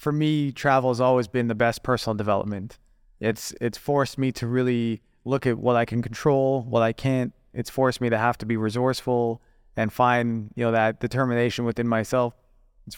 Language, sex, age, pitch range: English, male, 20-39, 115-130 Hz